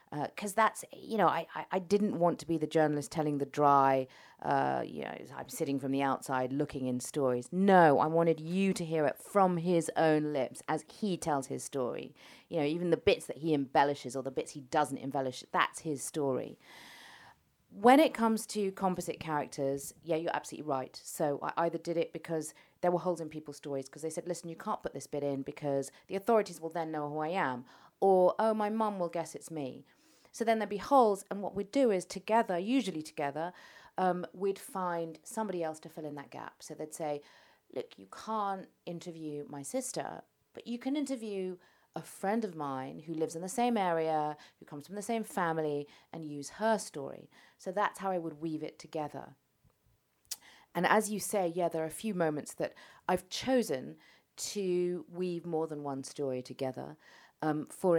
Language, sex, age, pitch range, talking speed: English, female, 40-59, 150-190 Hz, 205 wpm